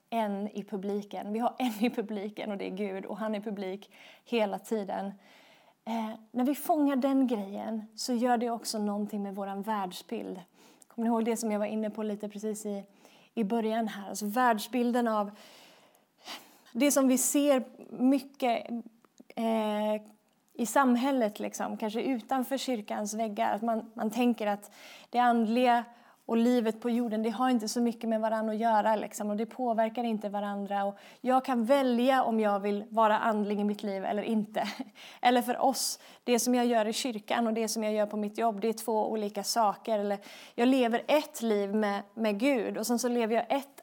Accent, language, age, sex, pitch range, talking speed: native, Swedish, 20-39, female, 210-250 Hz, 190 wpm